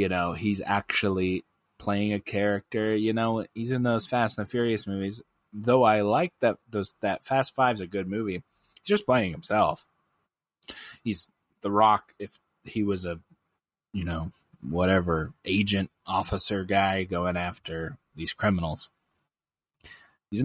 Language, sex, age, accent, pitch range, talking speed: English, male, 20-39, American, 90-115 Hz, 145 wpm